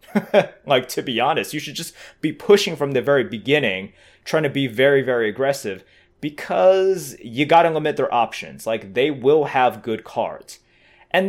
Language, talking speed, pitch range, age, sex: English, 175 wpm, 120-165 Hz, 30-49, male